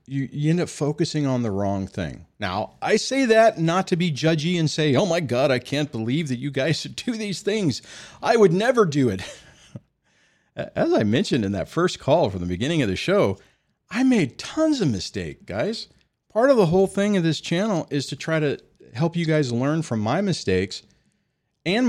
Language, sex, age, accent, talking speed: English, male, 40-59, American, 205 wpm